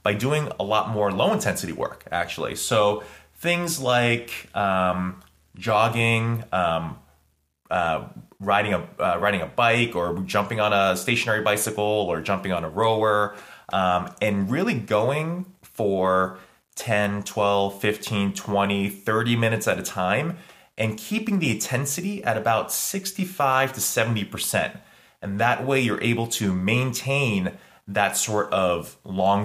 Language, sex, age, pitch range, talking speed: English, male, 20-39, 95-120 Hz, 135 wpm